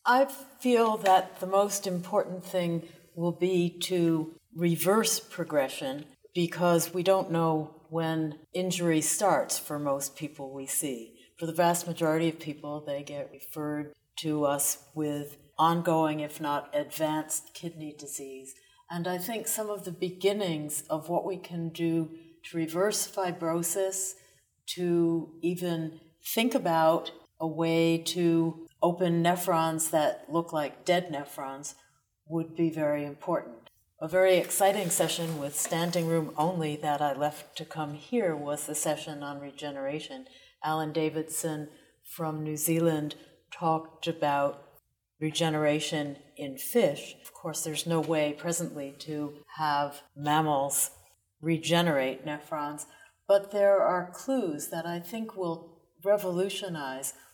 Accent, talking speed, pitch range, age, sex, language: American, 130 wpm, 150-175 Hz, 60-79, female, English